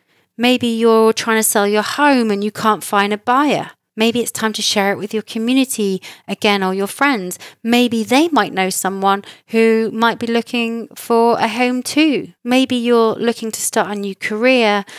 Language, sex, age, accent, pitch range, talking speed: English, female, 30-49, British, 195-230 Hz, 190 wpm